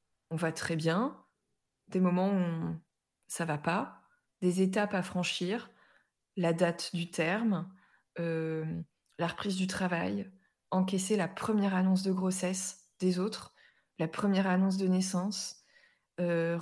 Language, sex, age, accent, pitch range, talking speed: French, female, 20-39, French, 175-200 Hz, 135 wpm